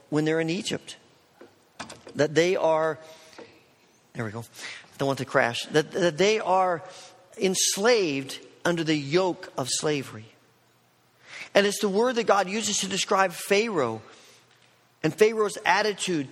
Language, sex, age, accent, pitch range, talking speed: English, male, 40-59, American, 150-200 Hz, 140 wpm